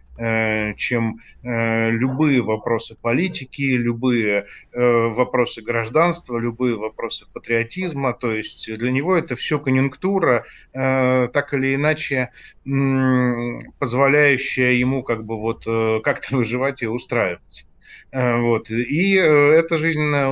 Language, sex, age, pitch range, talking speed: Russian, male, 20-39, 120-135 Hz, 95 wpm